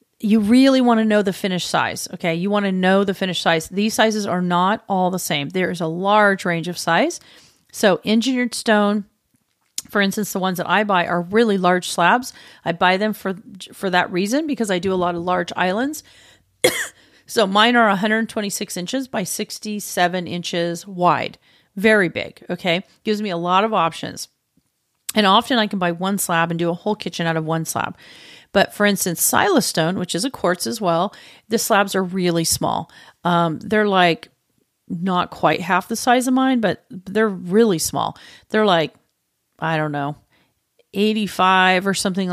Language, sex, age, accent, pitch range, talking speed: English, female, 40-59, American, 175-215 Hz, 185 wpm